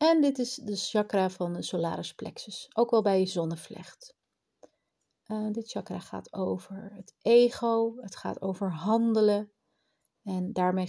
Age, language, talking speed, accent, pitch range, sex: 30-49, Dutch, 145 wpm, Dutch, 175-210 Hz, female